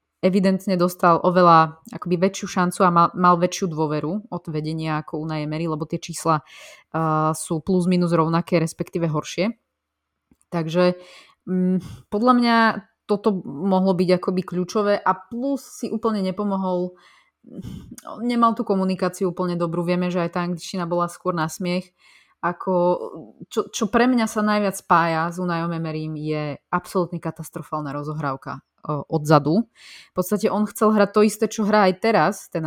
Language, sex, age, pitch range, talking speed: Slovak, female, 20-39, 165-195 Hz, 150 wpm